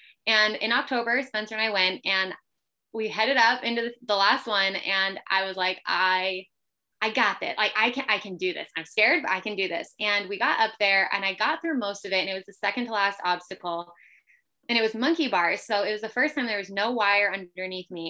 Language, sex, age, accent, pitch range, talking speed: English, female, 20-39, American, 195-255 Hz, 245 wpm